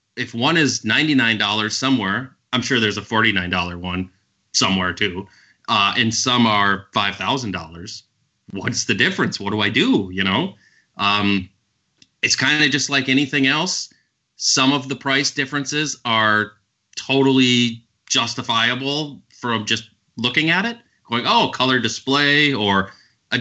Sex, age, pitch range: male, 30-49, 100-135 Hz